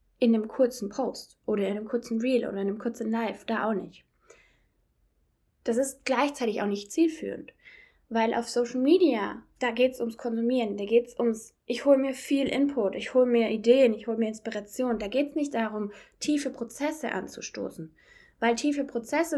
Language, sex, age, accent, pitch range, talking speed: German, female, 10-29, German, 220-260 Hz, 185 wpm